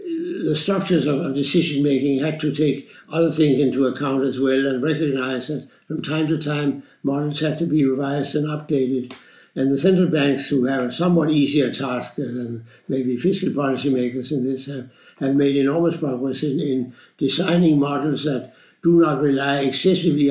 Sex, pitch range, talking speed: male, 130-150 Hz, 170 wpm